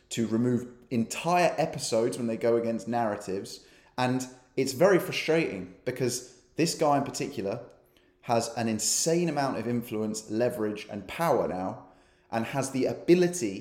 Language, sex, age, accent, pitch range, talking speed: English, male, 30-49, British, 115-155 Hz, 140 wpm